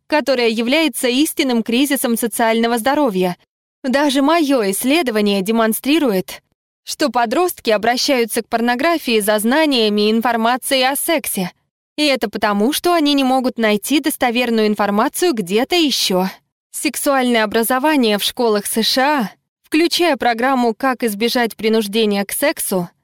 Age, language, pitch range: 20-39, Russian, 225-285 Hz